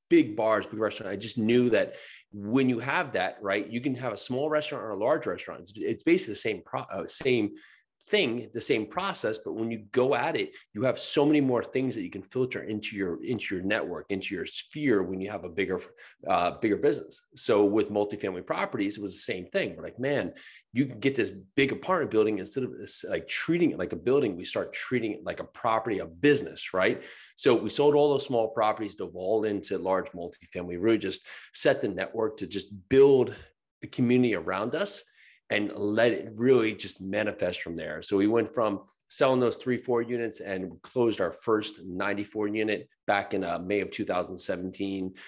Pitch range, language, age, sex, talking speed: 100-125 Hz, English, 30-49, male, 210 wpm